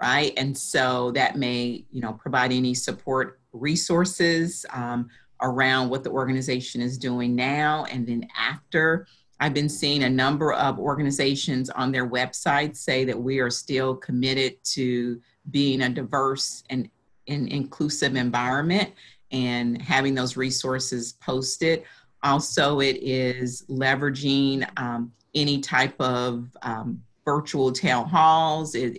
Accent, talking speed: American, 130 wpm